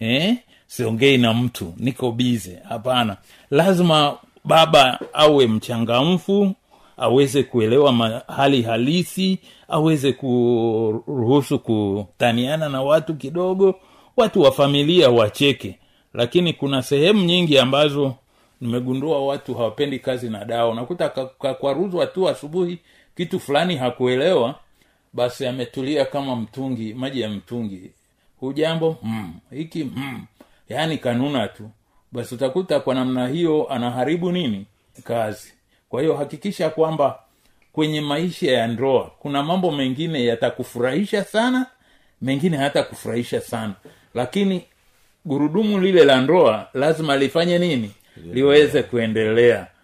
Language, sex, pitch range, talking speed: Swahili, male, 120-155 Hz, 115 wpm